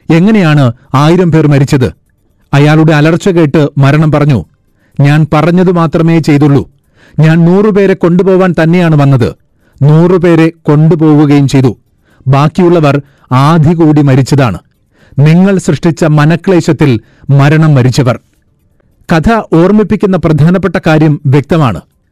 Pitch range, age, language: 140-170 Hz, 40-59, Malayalam